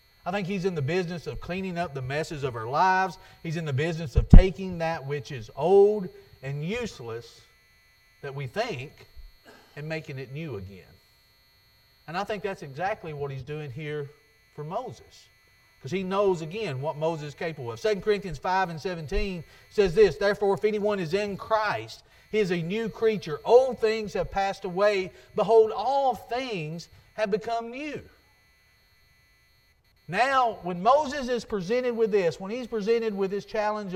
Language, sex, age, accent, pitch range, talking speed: English, male, 40-59, American, 160-235 Hz, 170 wpm